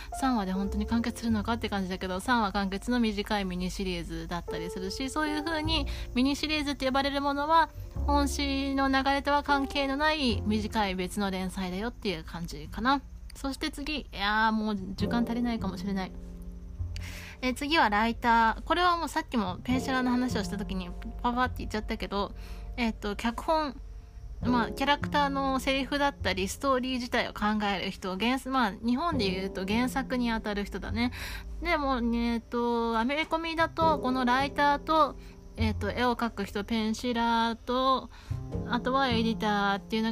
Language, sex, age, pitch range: Japanese, female, 20-39, 205-275 Hz